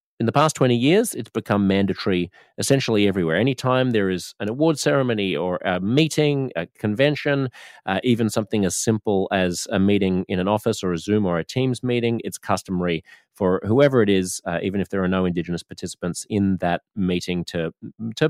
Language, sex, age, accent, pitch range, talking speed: English, male, 30-49, Australian, 90-110 Hz, 190 wpm